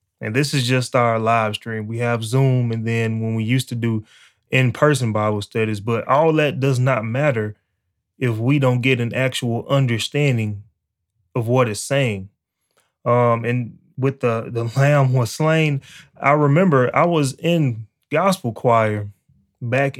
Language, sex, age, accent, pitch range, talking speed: English, male, 20-39, American, 115-140 Hz, 160 wpm